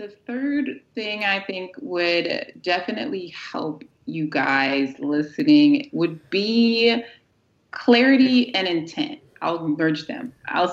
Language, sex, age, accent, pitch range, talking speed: English, female, 30-49, American, 160-245 Hz, 110 wpm